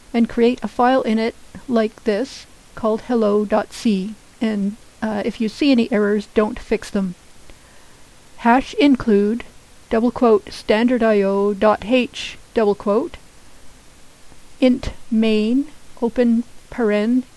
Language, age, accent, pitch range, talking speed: English, 50-69, American, 215-245 Hz, 115 wpm